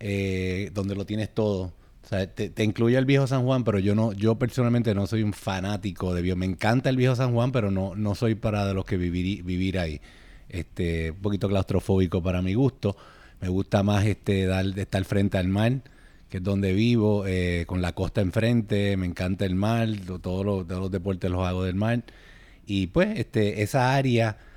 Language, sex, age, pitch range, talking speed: English, male, 30-49, 95-115 Hz, 210 wpm